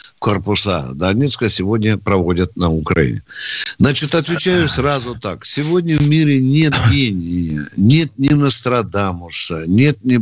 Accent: native